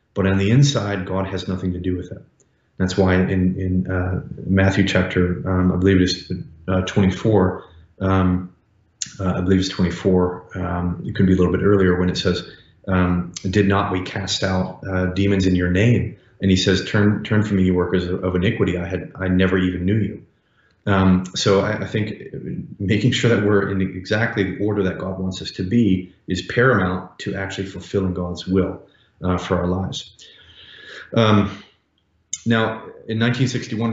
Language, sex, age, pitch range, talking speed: English, male, 30-49, 95-105 Hz, 185 wpm